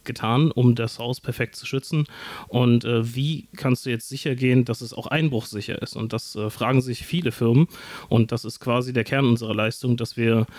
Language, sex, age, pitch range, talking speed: German, male, 30-49, 115-130 Hz, 210 wpm